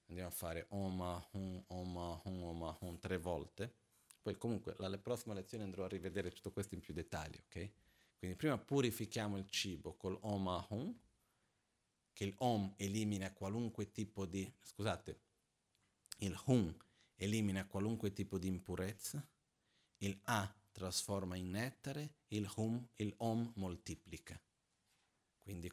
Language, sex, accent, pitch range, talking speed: Italian, male, native, 90-110 Hz, 130 wpm